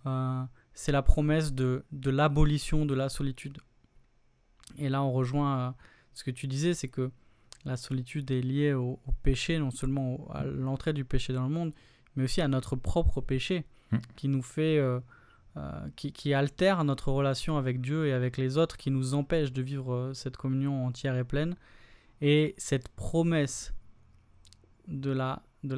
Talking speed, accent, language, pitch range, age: 180 wpm, French, French, 130-150 Hz, 20-39